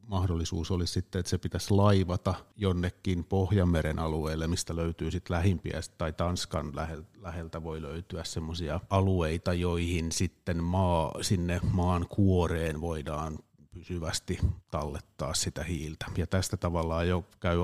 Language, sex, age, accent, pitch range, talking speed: Finnish, male, 30-49, native, 80-95 Hz, 125 wpm